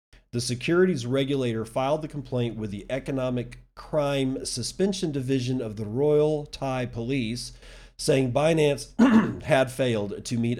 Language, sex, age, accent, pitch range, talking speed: English, male, 40-59, American, 100-130 Hz, 130 wpm